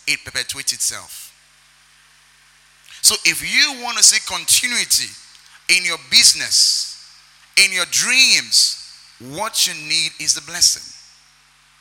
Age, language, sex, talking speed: 30-49, English, male, 110 wpm